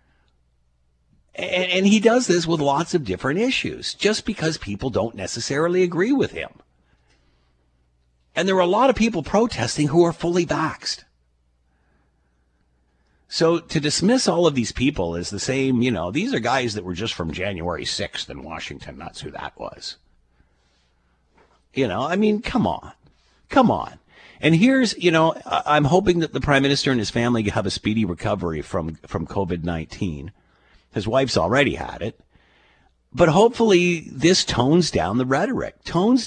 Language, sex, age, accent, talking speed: English, male, 50-69, American, 160 wpm